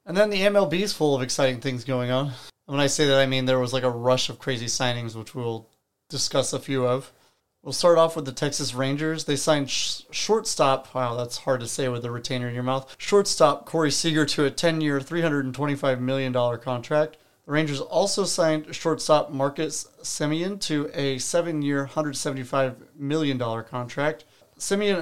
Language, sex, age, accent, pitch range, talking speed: English, male, 30-49, American, 130-155 Hz, 180 wpm